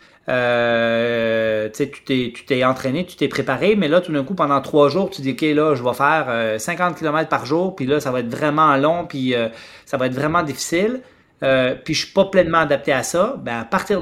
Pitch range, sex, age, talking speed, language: 135-185 Hz, male, 30-49, 235 wpm, French